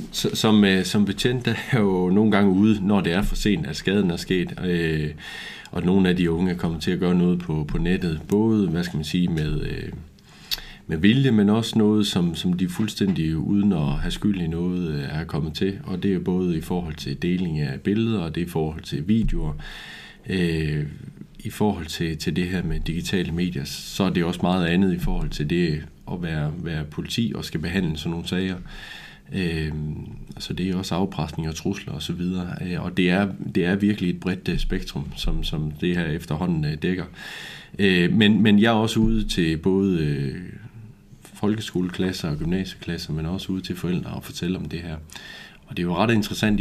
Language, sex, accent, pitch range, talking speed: Danish, male, native, 80-100 Hz, 205 wpm